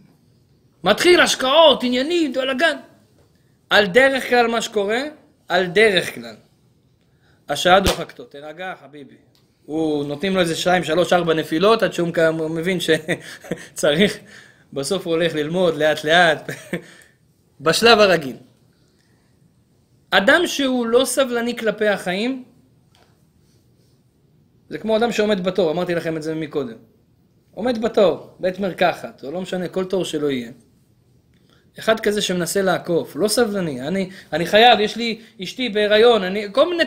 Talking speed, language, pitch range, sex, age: 130 wpm, Hebrew, 170-245 Hz, male, 20-39